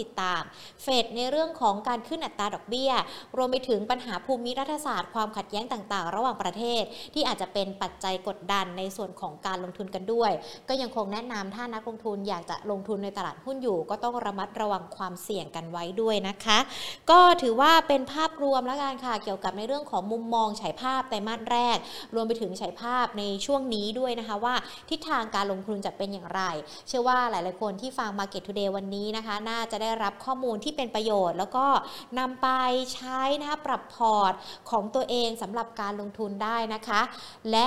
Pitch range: 205-260 Hz